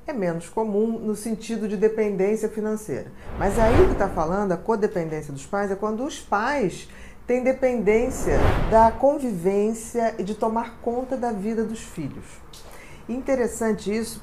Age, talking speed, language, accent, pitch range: 40-59, 150 wpm, Portuguese, Brazilian, 185-230 Hz